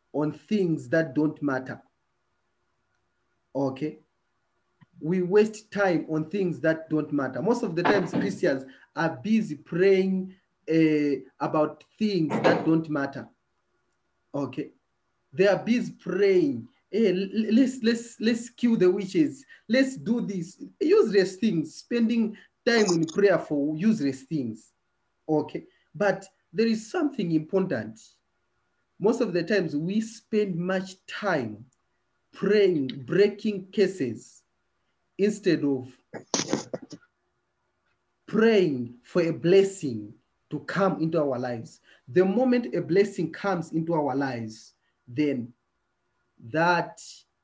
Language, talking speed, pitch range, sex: English, 115 wpm, 140-200 Hz, male